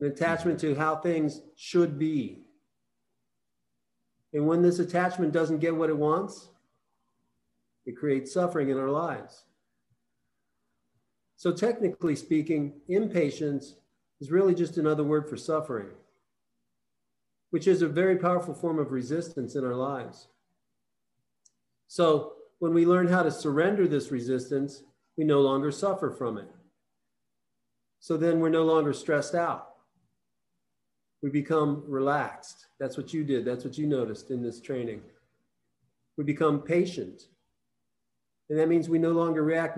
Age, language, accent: 40-59, English, American